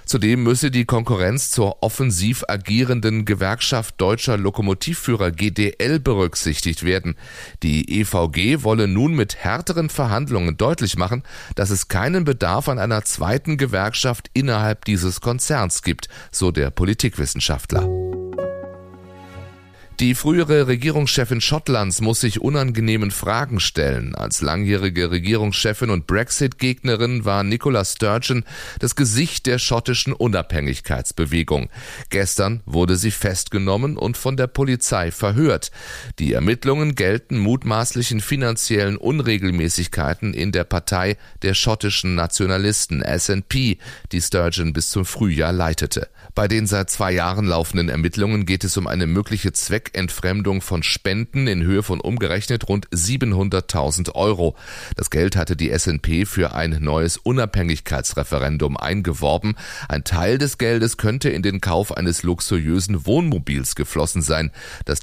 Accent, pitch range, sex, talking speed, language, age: German, 90-120 Hz, male, 125 wpm, German, 30-49